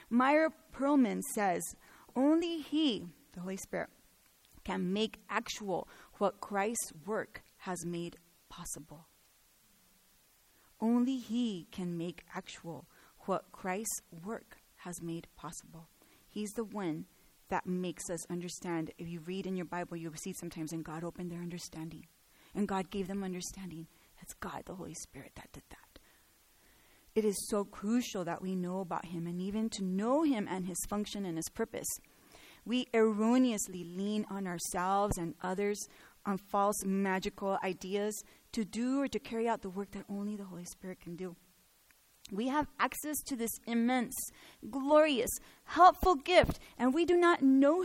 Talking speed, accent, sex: 155 wpm, American, female